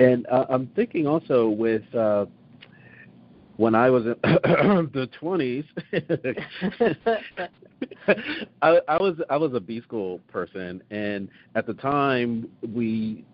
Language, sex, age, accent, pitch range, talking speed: English, male, 40-59, American, 100-120 Hz, 120 wpm